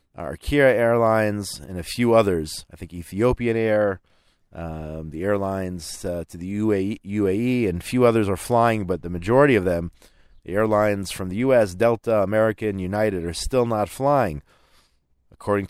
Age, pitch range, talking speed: 30-49, 85-110 Hz, 155 wpm